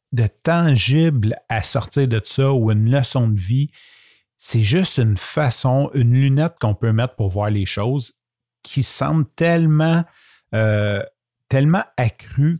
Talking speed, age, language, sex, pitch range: 145 wpm, 40-59, French, male, 110-140 Hz